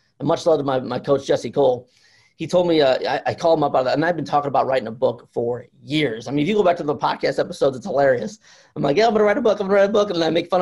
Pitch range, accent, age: 130-175 Hz, American, 30-49